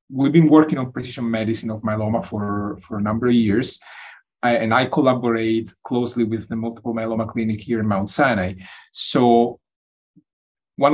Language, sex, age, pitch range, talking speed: English, male, 30-49, 110-135 Hz, 160 wpm